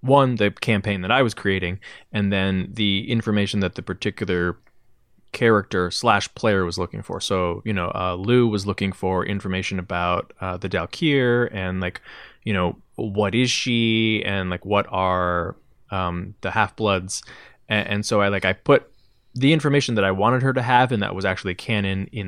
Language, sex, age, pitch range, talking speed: English, male, 20-39, 95-115 Hz, 180 wpm